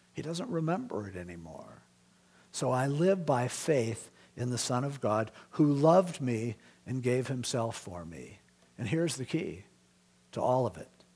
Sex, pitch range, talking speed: male, 95-160 Hz, 165 wpm